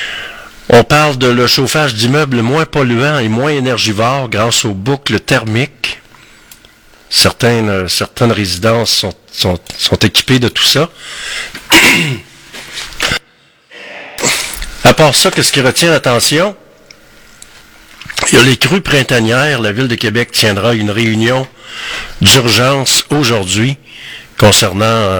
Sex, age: male, 50-69